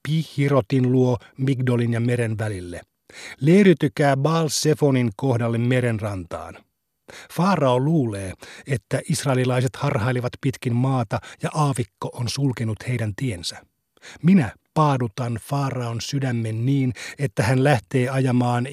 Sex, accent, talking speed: male, native, 110 wpm